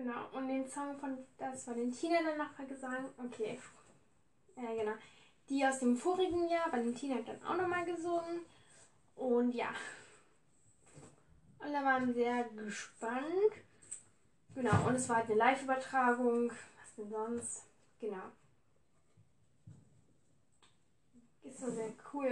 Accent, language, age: German, German, 10-29